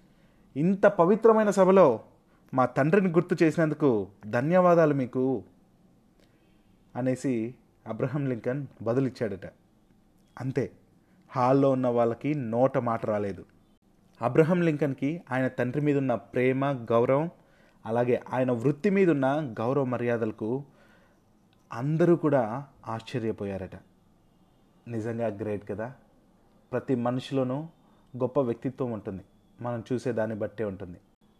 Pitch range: 110-140 Hz